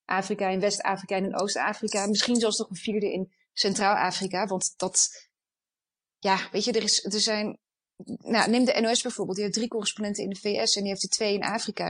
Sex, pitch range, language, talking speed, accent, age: female, 190-220 Hz, Dutch, 205 wpm, Dutch, 30-49